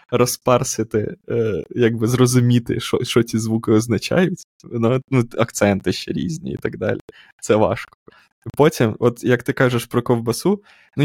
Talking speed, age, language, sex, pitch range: 135 wpm, 20-39, Ukrainian, male, 105-125 Hz